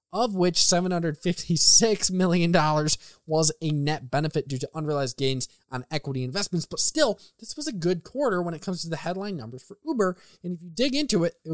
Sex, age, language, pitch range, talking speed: male, 20-39, English, 150-200 Hz, 200 wpm